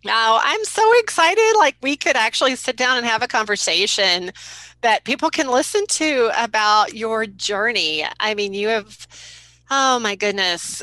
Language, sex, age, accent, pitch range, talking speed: English, female, 30-49, American, 170-215 Hz, 165 wpm